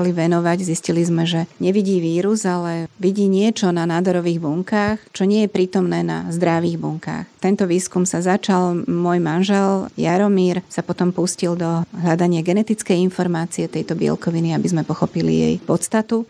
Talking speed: 145 wpm